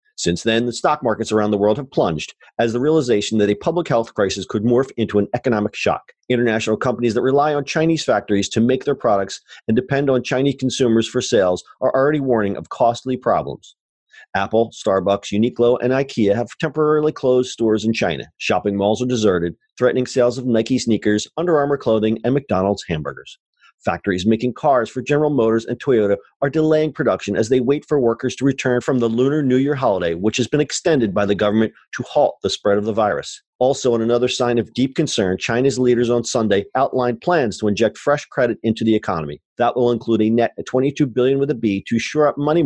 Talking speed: 205 wpm